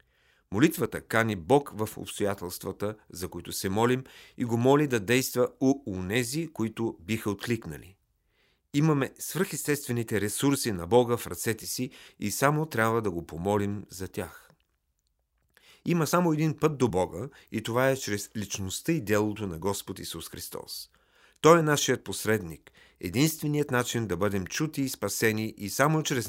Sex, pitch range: male, 90-125 Hz